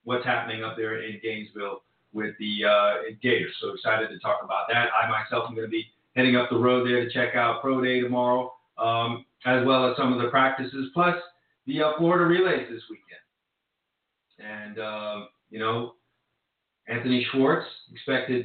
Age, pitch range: 40-59, 115-135 Hz